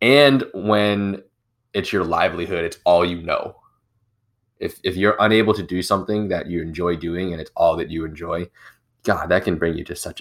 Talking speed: 195 wpm